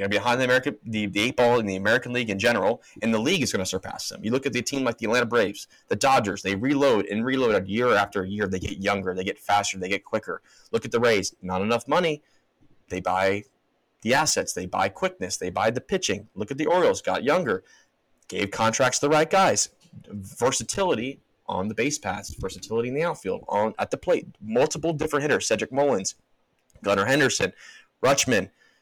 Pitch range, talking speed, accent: 100-125 Hz, 205 wpm, American